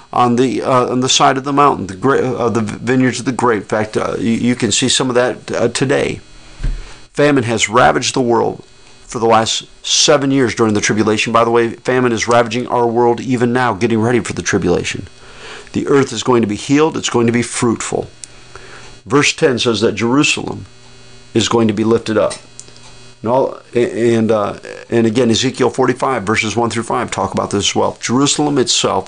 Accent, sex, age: American, male, 40-59